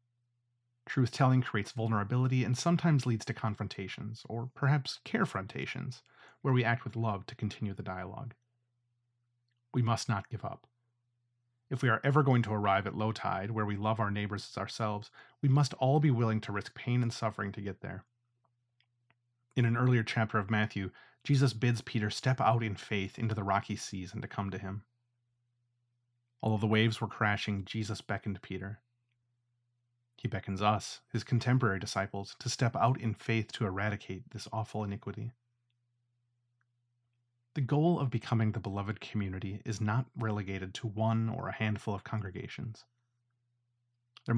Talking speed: 160 wpm